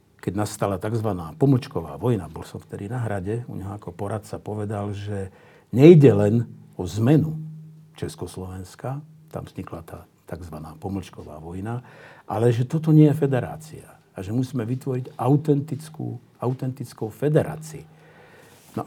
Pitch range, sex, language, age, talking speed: 100-145 Hz, male, Slovak, 50-69, 130 wpm